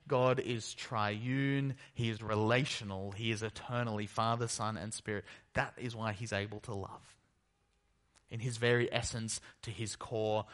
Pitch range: 100-120 Hz